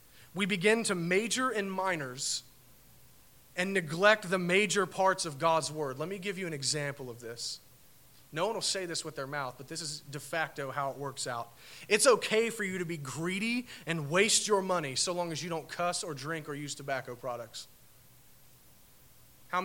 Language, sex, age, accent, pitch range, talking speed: English, male, 30-49, American, 130-165 Hz, 190 wpm